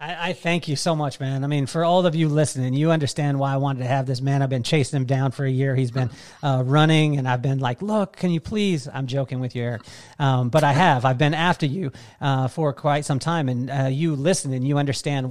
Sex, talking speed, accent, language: male, 265 wpm, American, English